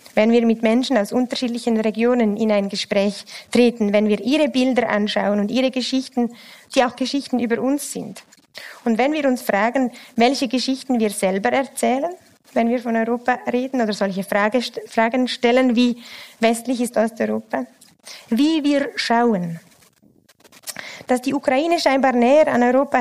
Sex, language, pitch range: female, German, 220-270 Hz